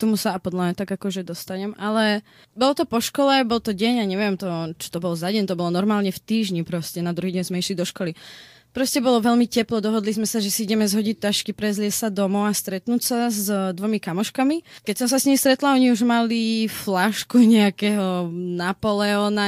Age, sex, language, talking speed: 20-39, female, Czech, 215 wpm